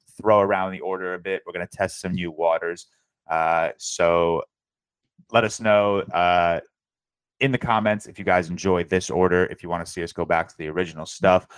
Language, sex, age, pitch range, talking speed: English, male, 20-39, 85-105 Hz, 205 wpm